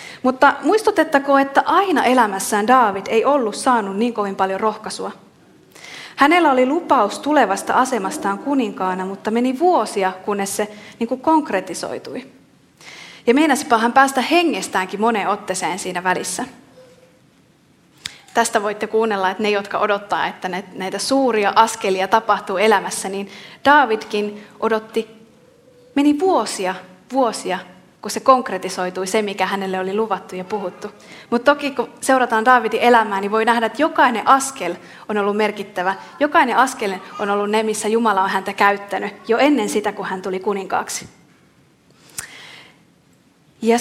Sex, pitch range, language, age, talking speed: female, 195-255 Hz, Finnish, 30-49, 130 wpm